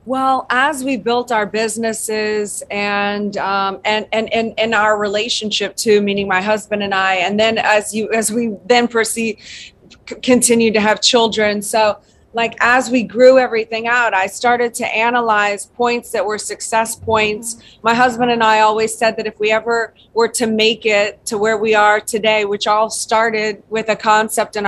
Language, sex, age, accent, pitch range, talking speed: English, female, 30-49, American, 210-235 Hz, 180 wpm